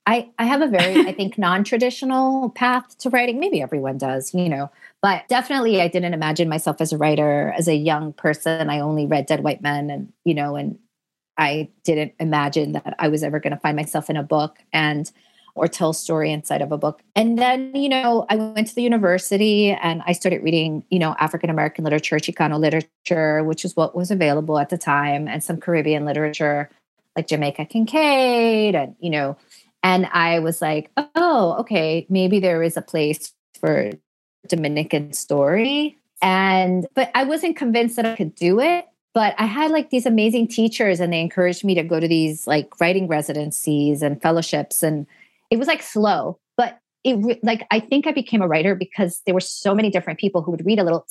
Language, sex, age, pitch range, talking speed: English, female, 30-49, 155-225 Hz, 200 wpm